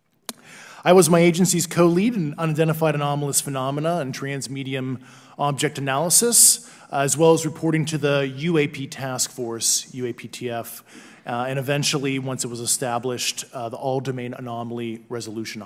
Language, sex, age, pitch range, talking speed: English, male, 20-39, 125-165 Hz, 140 wpm